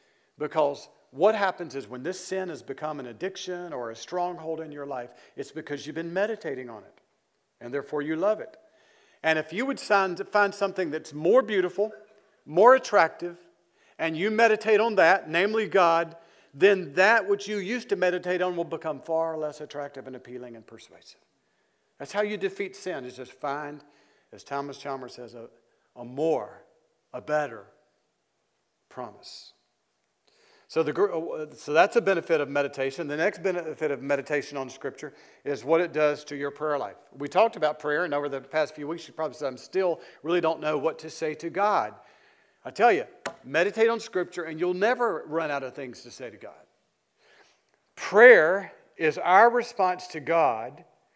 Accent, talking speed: American, 175 wpm